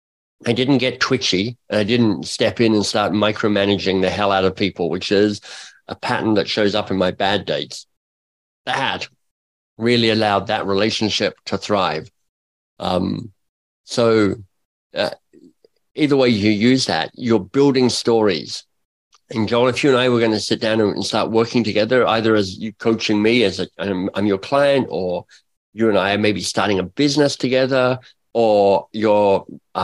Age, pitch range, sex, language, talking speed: 50-69, 100-125 Hz, male, English, 170 wpm